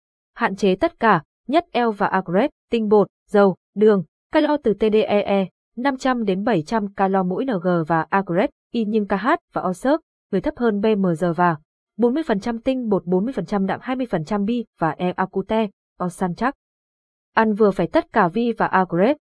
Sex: female